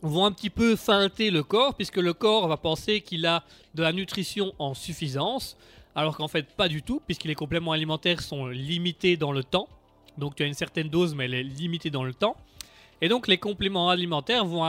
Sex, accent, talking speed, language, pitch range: male, French, 215 wpm, French, 145-190 Hz